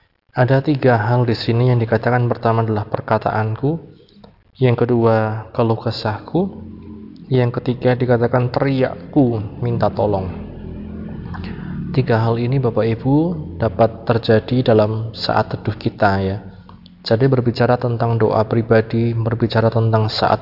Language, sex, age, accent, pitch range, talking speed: Indonesian, male, 20-39, native, 110-125 Hz, 120 wpm